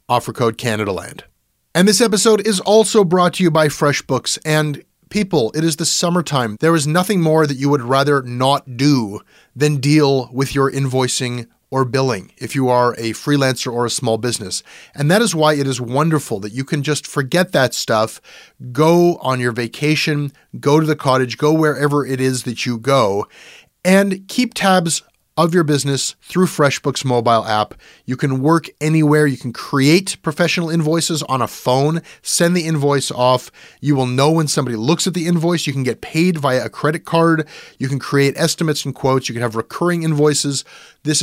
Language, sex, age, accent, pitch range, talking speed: English, male, 30-49, American, 125-160 Hz, 190 wpm